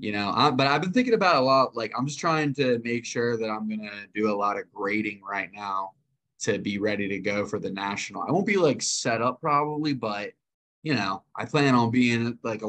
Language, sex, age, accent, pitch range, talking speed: English, male, 20-39, American, 105-120 Hz, 240 wpm